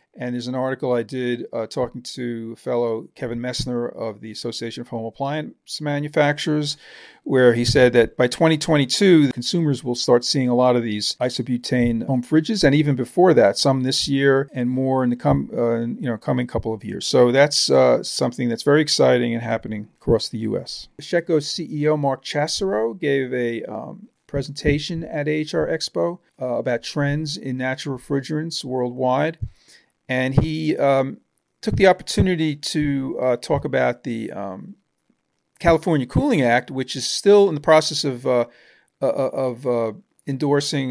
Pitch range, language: 120-150 Hz, English